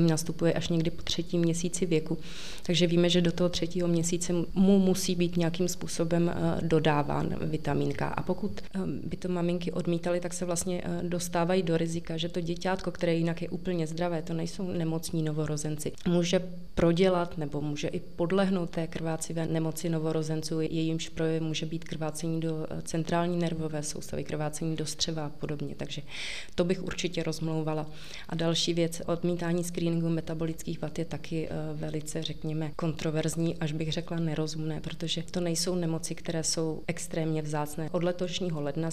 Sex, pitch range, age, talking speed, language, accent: female, 160-175 Hz, 30-49, 155 wpm, Czech, native